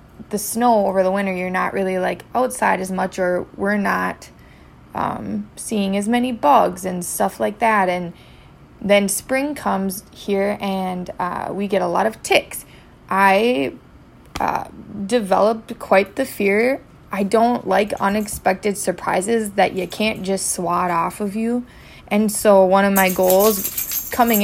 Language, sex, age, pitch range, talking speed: English, female, 20-39, 185-210 Hz, 155 wpm